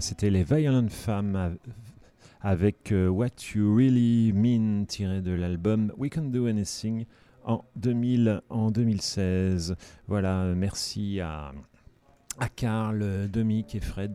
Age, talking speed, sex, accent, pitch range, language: 40-59, 120 wpm, male, French, 95-115 Hz, French